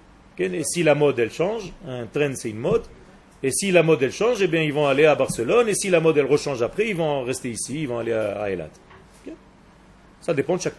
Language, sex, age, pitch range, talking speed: French, male, 40-59, 140-225 Hz, 255 wpm